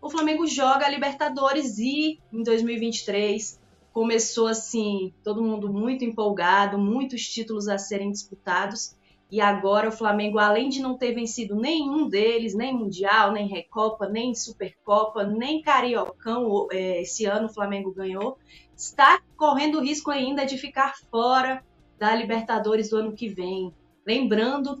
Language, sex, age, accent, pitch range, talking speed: Portuguese, female, 20-39, Brazilian, 200-255 Hz, 140 wpm